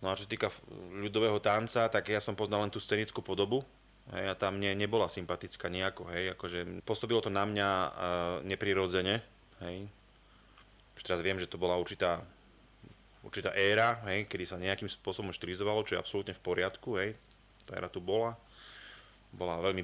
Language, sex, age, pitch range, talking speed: Slovak, male, 30-49, 90-105 Hz, 170 wpm